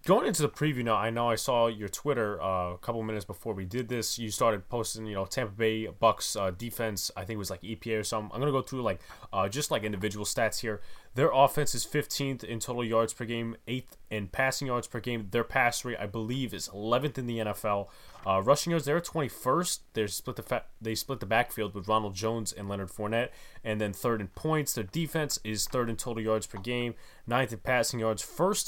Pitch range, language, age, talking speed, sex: 105-130 Hz, English, 20-39, 235 wpm, male